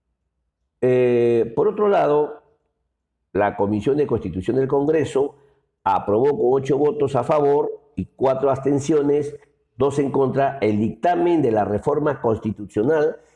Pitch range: 110-160 Hz